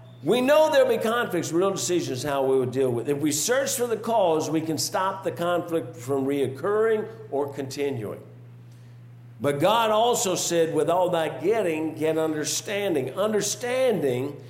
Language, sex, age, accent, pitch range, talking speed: English, male, 50-69, American, 135-195 Hz, 160 wpm